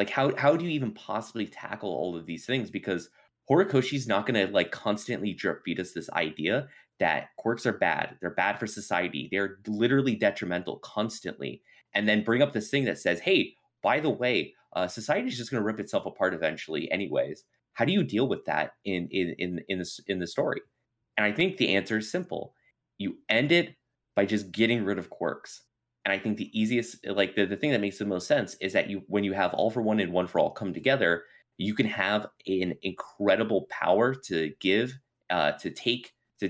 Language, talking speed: English, 215 wpm